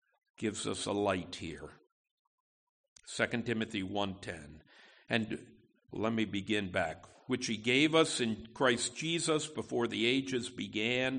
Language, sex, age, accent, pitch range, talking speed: English, male, 60-79, American, 115-155 Hz, 130 wpm